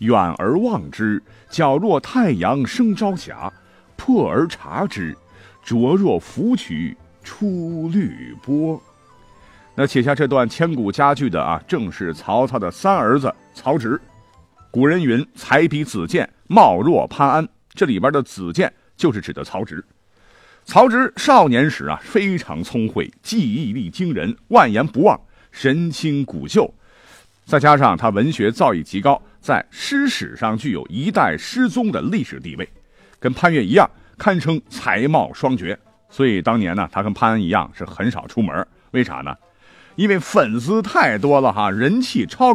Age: 50-69